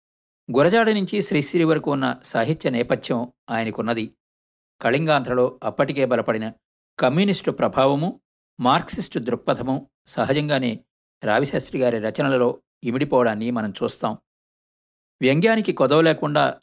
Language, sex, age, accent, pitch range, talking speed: Telugu, male, 50-69, native, 120-160 Hz, 85 wpm